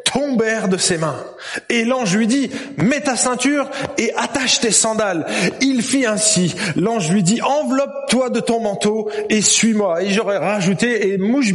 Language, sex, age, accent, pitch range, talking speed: French, male, 30-49, French, 185-255 Hz, 185 wpm